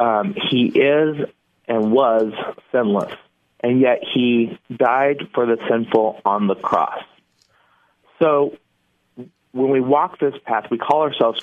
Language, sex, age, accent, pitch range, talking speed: English, male, 40-59, American, 115-140 Hz, 130 wpm